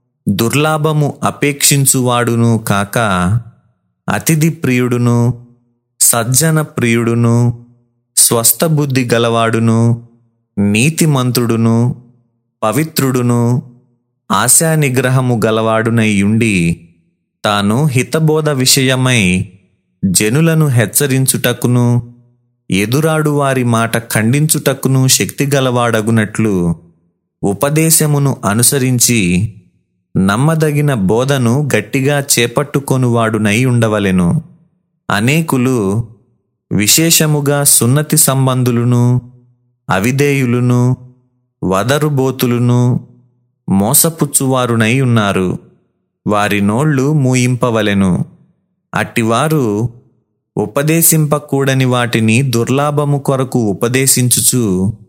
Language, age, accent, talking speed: Telugu, 30-49, native, 50 wpm